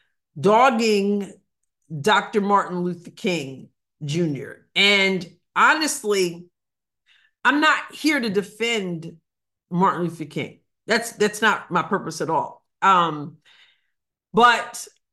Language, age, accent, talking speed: English, 50-69, American, 100 wpm